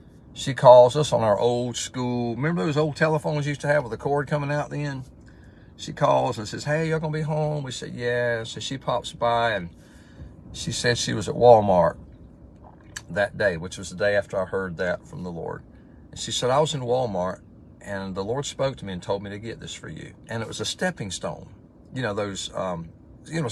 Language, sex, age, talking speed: English, male, 50-69, 235 wpm